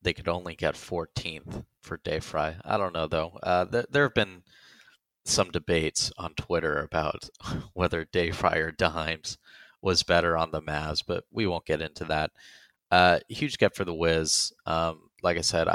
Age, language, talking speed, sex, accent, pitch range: 30-49, English, 185 wpm, male, American, 80-95 Hz